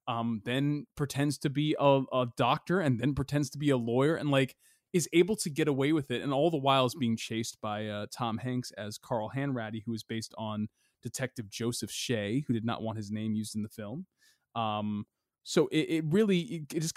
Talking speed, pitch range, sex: 225 wpm, 110-145 Hz, male